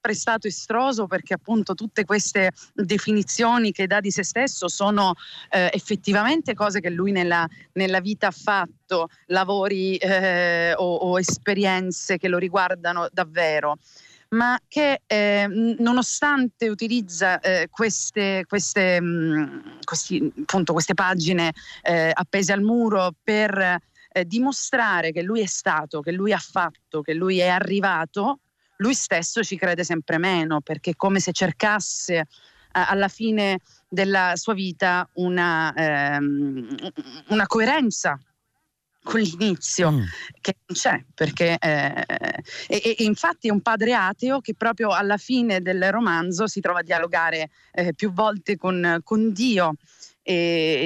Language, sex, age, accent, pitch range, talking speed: Italian, female, 40-59, native, 175-215 Hz, 135 wpm